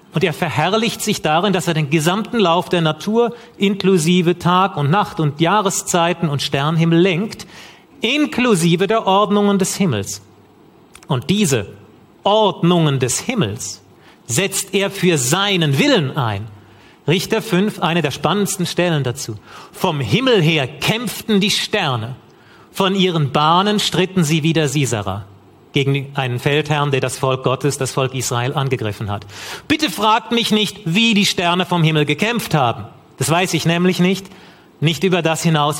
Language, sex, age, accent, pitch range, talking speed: German, male, 40-59, German, 145-195 Hz, 150 wpm